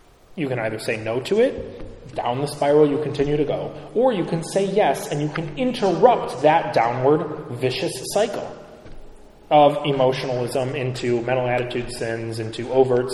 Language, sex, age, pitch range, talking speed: English, male, 30-49, 125-180 Hz, 160 wpm